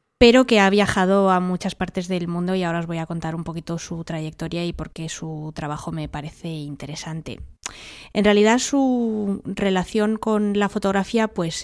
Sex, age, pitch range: female, 20-39, 170-210 Hz